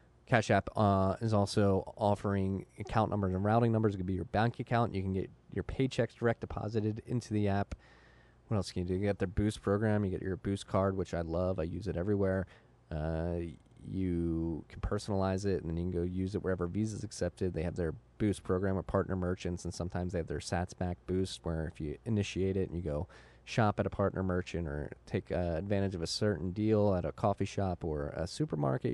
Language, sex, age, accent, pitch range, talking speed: English, male, 20-39, American, 90-110 Hz, 225 wpm